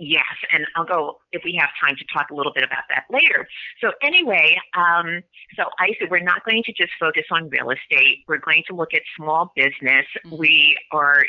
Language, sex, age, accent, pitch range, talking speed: English, female, 30-49, American, 150-175 Hz, 215 wpm